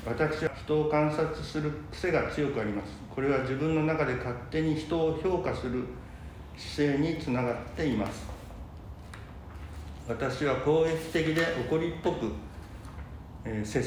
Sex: male